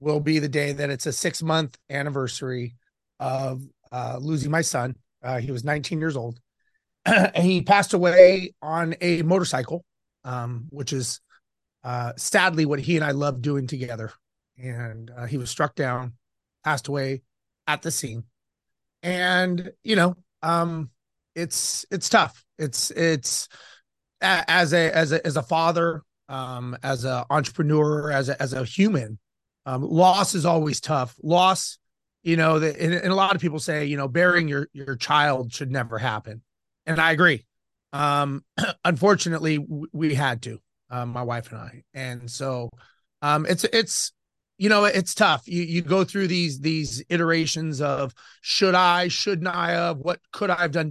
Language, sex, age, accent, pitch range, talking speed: English, male, 30-49, American, 130-170 Hz, 165 wpm